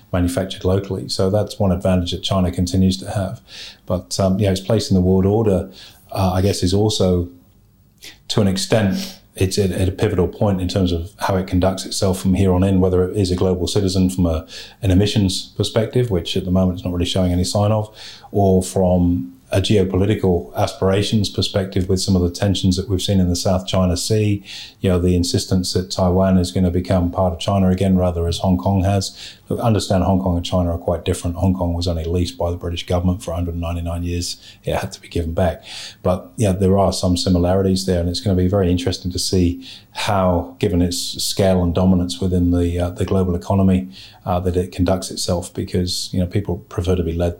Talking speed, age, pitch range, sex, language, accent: 215 wpm, 30-49, 90-100 Hz, male, English, British